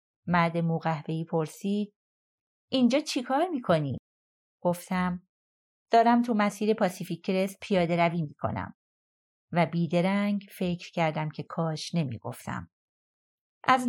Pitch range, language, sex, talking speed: 170-220 Hz, Persian, female, 105 wpm